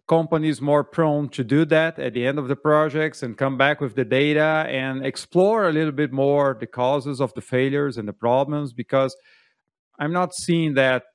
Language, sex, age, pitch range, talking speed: Portuguese, male, 40-59, 125-155 Hz, 200 wpm